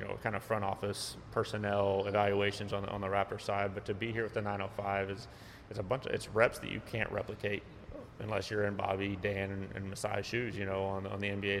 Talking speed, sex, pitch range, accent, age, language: 235 wpm, male, 100-110 Hz, American, 30-49, English